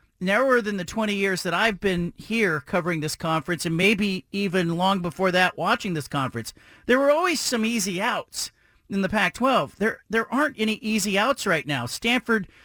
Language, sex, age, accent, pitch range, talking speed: English, male, 40-59, American, 180-240 Hz, 185 wpm